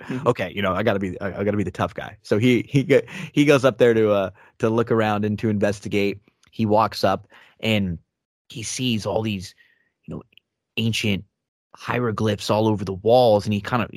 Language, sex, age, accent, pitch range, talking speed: English, male, 30-49, American, 100-115 Hz, 200 wpm